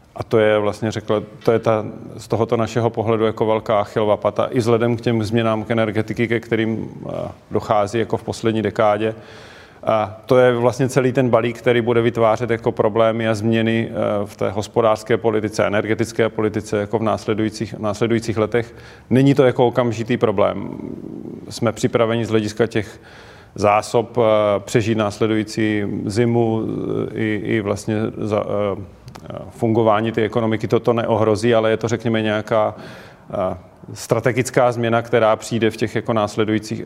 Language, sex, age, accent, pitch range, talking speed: Czech, male, 40-59, native, 105-115 Hz, 150 wpm